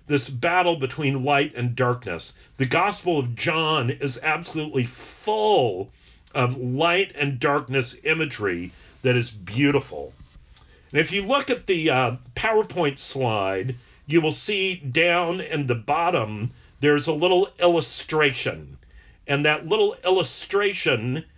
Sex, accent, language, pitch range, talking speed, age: male, American, English, 125-170 Hz, 125 wpm, 50-69